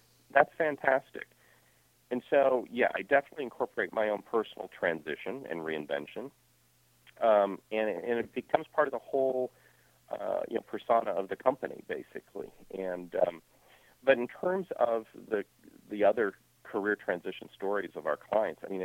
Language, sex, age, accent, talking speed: English, male, 50-69, American, 155 wpm